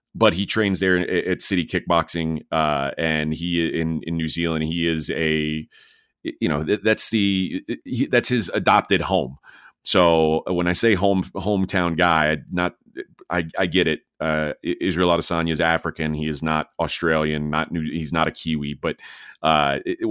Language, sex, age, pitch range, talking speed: English, male, 30-49, 80-95 Hz, 160 wpm